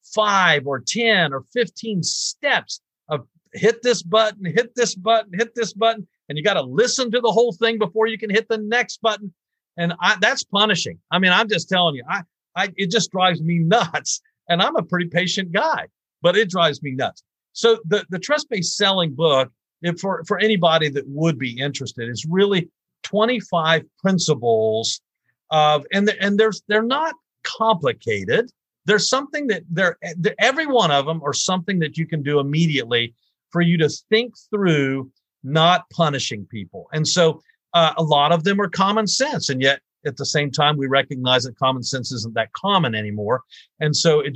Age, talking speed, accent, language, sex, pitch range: 50-69, 185 wpm, American, English, male, 145-210 Hz